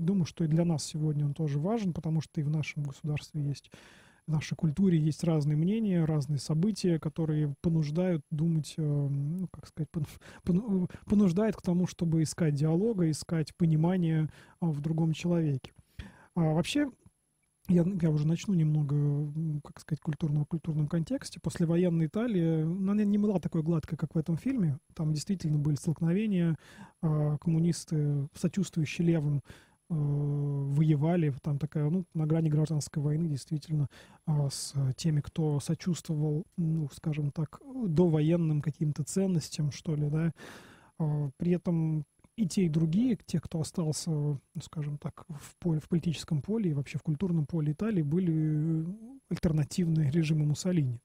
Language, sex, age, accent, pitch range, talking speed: Russian, male, 20-39, native, 150-175 Hz, 140 wpm